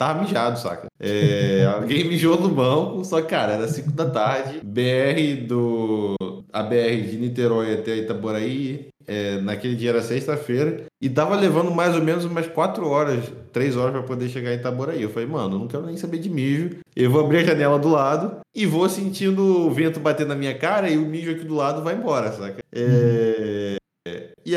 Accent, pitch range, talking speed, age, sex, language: Brazilian, 115-160 Hz, 195 wpm, 20-39, male, English